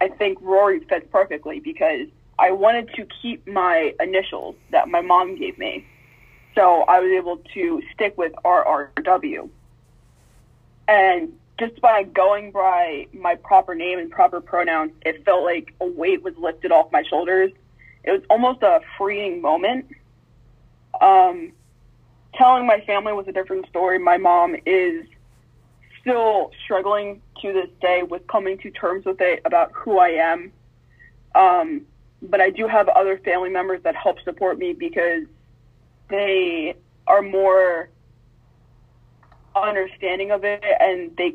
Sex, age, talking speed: female, 20-39, 145 wpm